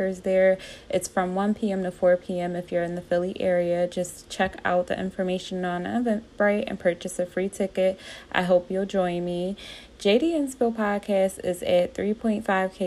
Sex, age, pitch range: female, 20-39, 165-190 Hz